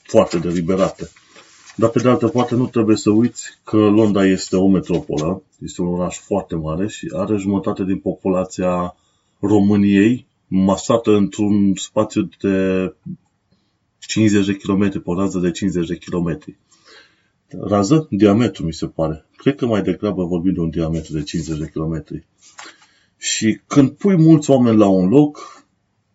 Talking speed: 145 wpm